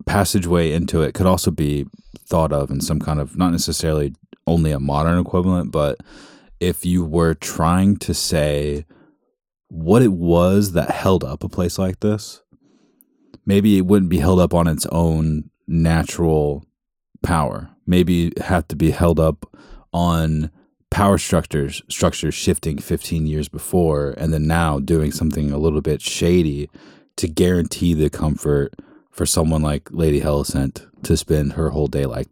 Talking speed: 160 wpm